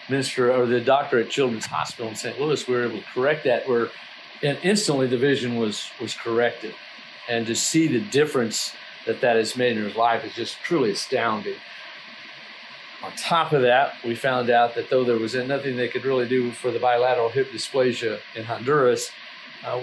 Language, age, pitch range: English, 50-69, 120-140 Hz